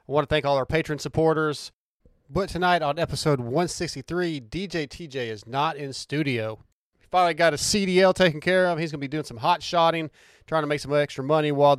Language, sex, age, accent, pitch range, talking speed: English, male, 30-49, American, 140-165 Hz, 215 wpm